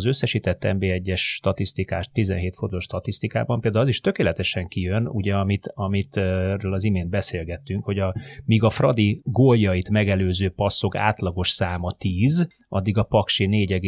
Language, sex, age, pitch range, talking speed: Hungarian, male, 30-49, 95-110 Hz, 145 wpm